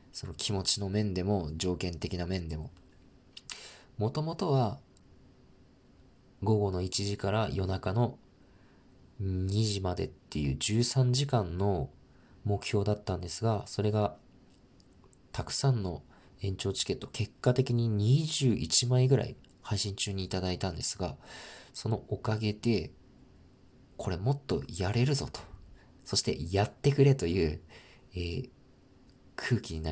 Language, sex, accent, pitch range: Japanese, male, native, 95-125 Hz